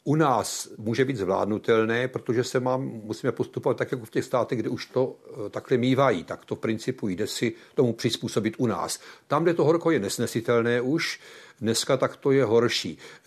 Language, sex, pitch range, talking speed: Czech, male, 110-135 Hz, 185 wpm